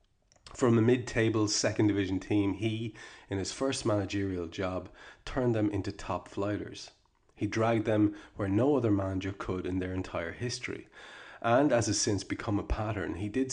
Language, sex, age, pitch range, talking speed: English, male, 30-49, 95-110 Hz, 170 wpm